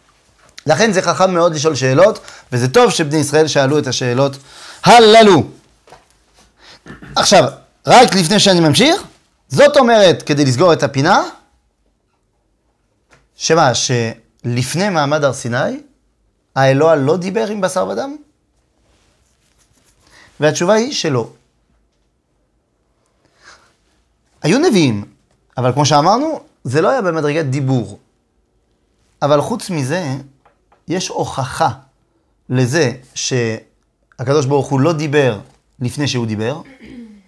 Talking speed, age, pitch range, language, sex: 85 wpm, 30-49, 120-170 Hz, French, male